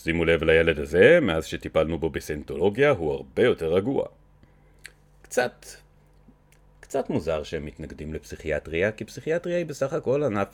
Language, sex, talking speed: Hebrew, male, 135 wpm